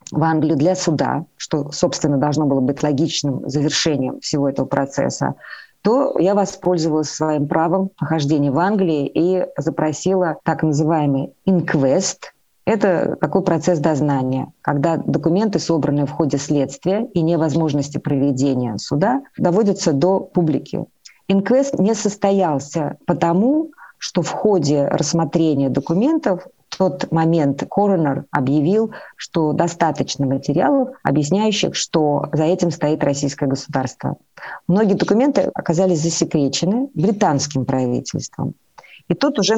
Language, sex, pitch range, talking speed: Russian, female, 145-185 Hz, 115 wpm